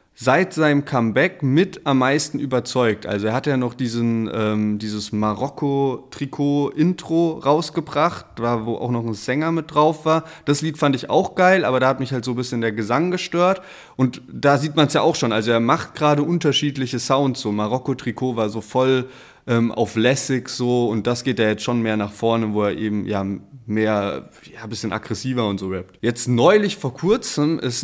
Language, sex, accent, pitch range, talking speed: German, male, German, 115-150 Hz, 195 wpm